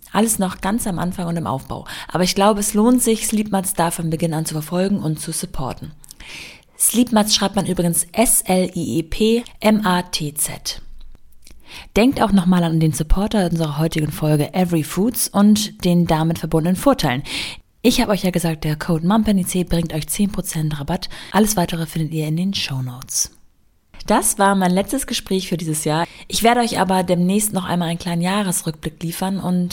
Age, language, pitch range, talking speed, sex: 20-39, German, 165-210 Hz, 170 wpm, female